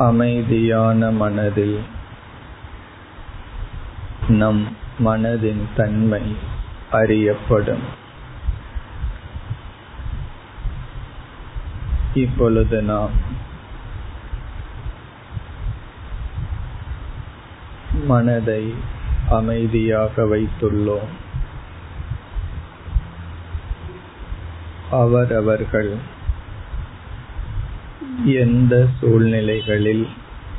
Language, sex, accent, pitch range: Tamil, male, native, 100-115 Hz